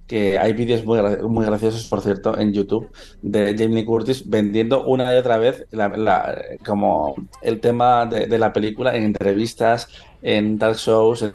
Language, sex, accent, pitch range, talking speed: Spanish, male, Spanish, 105-125 Hz, 175 wpm